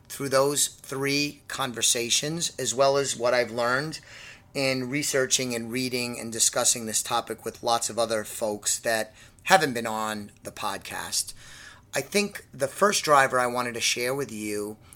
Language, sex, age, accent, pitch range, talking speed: English, male, 30-49, American, 110-140 Hz, 160 wpm